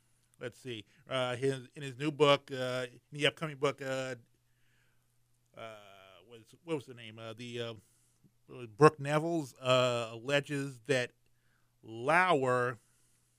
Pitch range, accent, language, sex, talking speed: 120-135 Hz, American, English, male, 135 wpm